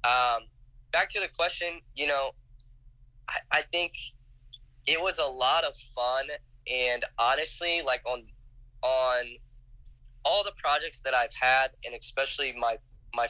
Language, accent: English, American